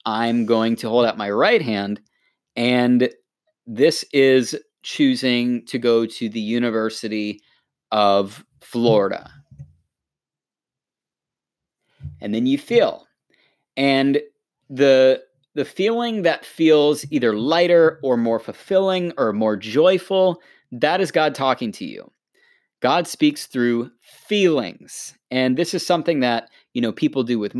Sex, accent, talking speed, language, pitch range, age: male, American, 125 wpm, English, 120-170 Hz, 30-49